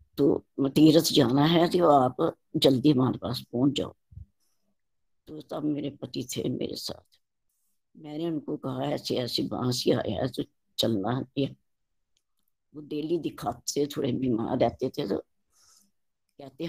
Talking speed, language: 125 wpm, Hindi